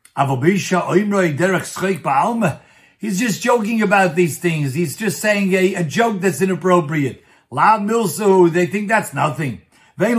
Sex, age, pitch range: male, 50-69, 170-195 Hz